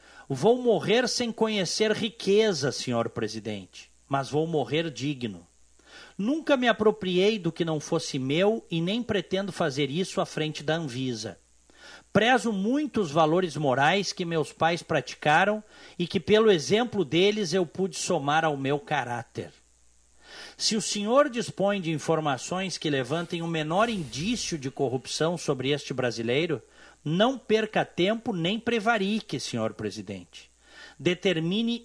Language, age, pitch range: Portuguese, 50-69, 145-195 Hz